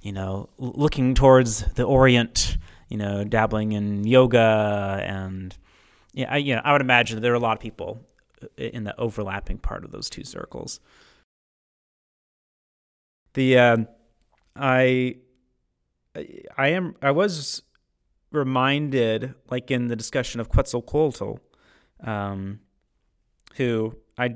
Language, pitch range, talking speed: English, 100-125 Hz, 130 wpm